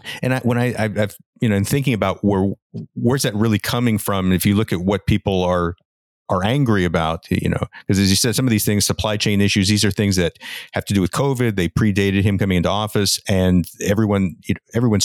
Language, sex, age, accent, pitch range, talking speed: English, male, 50-69, American, 95-115 Hz, 230 wpm